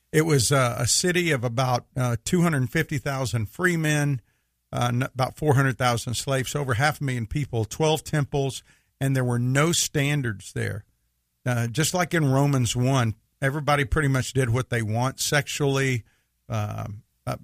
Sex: male